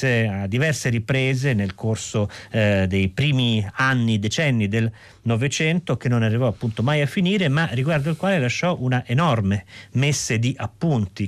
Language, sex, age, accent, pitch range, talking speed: Italian, male, 40-59, native, 110-145 Hz, 150 wpm